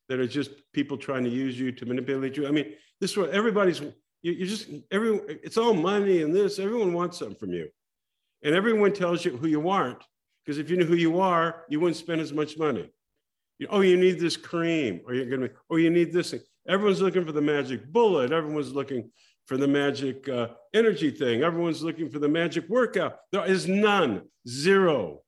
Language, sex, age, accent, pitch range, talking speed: English, male, 50-69, American, 135-175 Hz, 210 wpm